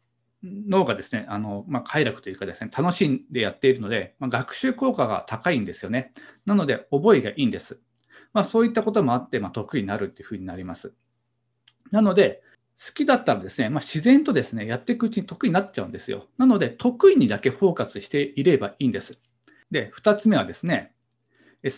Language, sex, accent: Japanese, male, native